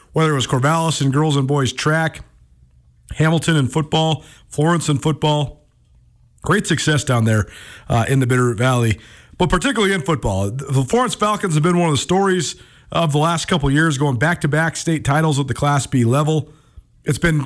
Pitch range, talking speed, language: 125-165 Hz, 195 wpm, English